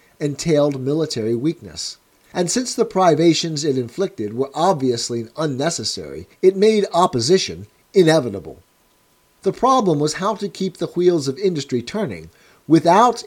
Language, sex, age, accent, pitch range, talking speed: English, male, 50-69, American, 125-190 Hz, 125 wpm